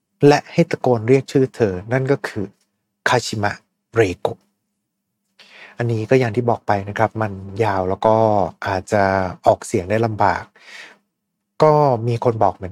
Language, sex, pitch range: Thai, male, 100-130 Hz